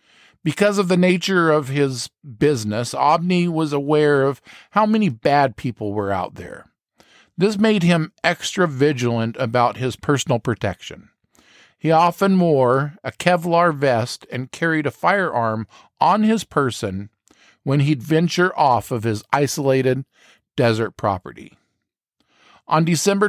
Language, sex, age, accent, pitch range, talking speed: English, male, 50-69, American, 125-170 Hz, 130 wpm